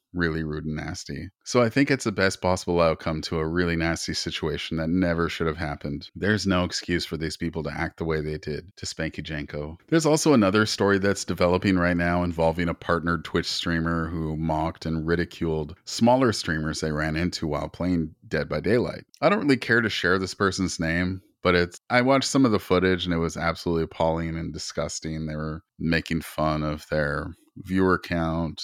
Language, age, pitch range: English, 30-49, 80-95 Hz